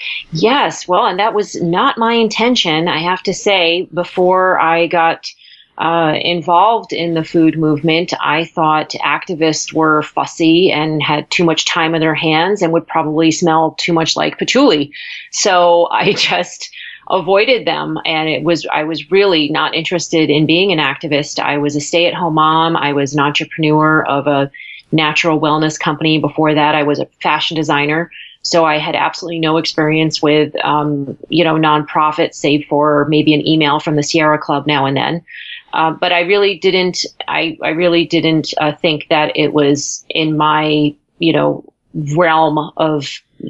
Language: English